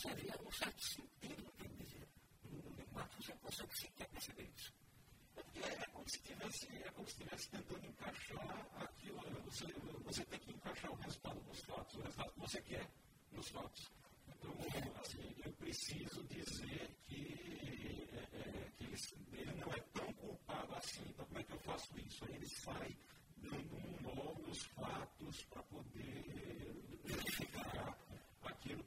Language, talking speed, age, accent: Portuguese, 160 wpm, 50-69, American